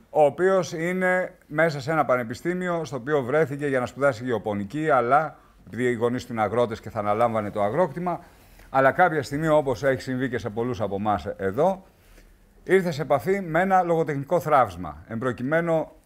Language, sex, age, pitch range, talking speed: English, male, 50-69, 110-155 Hz, 170 wpm